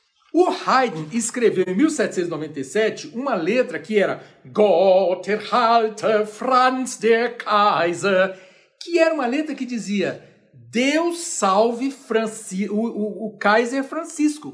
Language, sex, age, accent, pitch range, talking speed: Portuguese, male, 60-79, Brazilian, 185-260 Hz, 105 wpm